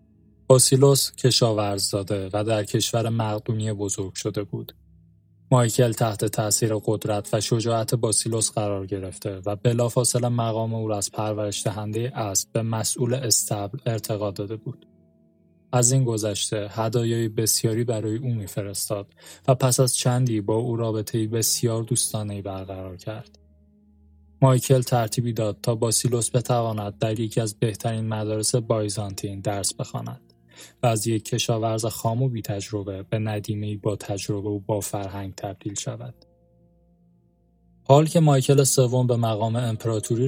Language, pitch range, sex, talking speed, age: Persian, 100-120 Hz, male, 135 wpm, 10-29